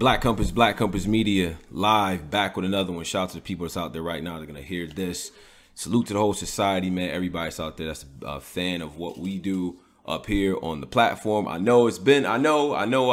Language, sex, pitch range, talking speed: English, male, 90-120 Hz, 240 wpm